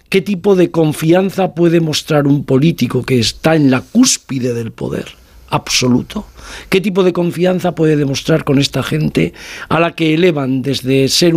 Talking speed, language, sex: 165 wpm, Spanish, male